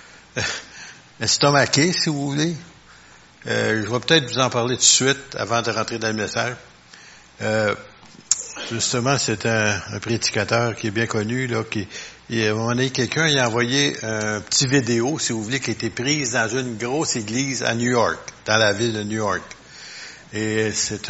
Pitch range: 110-135 Hz